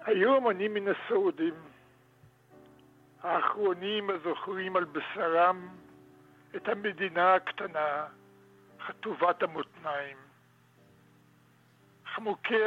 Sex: male